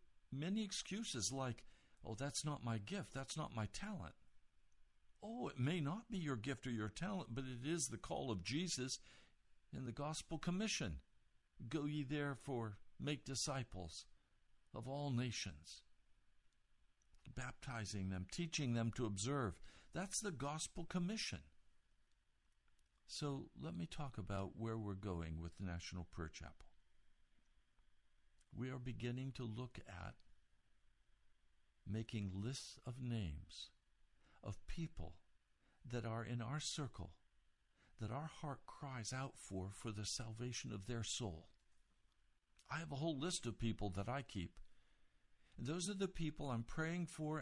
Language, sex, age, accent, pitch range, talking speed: English, male, 60-79, American, 100-145 Hz, 140 wpm